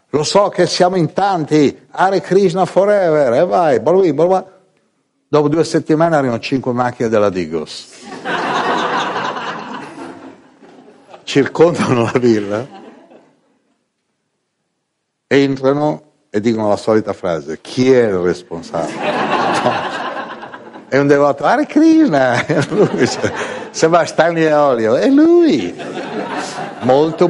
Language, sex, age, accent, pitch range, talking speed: Italian, male, 60-79, native, 125-175 Hz, 105 wpm